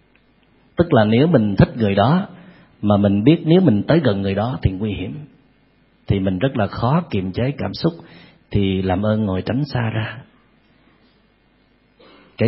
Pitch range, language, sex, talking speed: 105-150 Hz, Vietnamese, male, 175 wpm